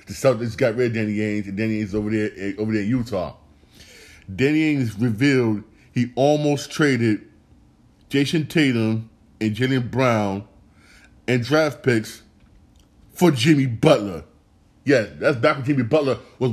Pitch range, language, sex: 105-135 Hz, English, male